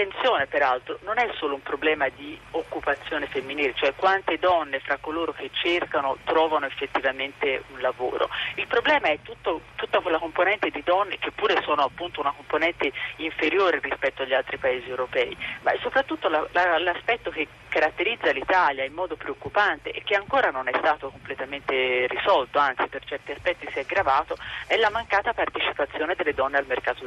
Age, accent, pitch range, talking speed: 30-49, native, 140-185 Hz, 170 wpm